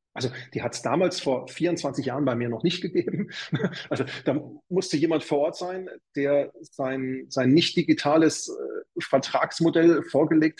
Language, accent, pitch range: German, German, 125-150 Hz